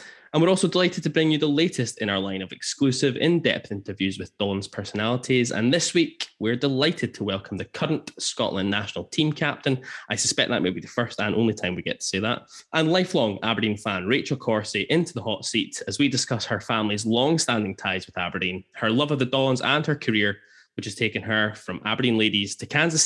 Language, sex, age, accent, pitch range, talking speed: English, male, 10-29, British, 100-145 Hz, 215 wpm